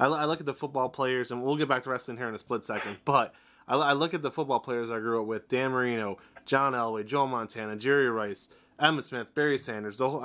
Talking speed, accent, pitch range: 245 wpm, American, 110-140 Hz